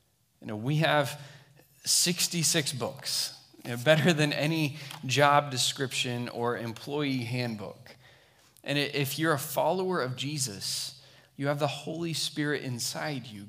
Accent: American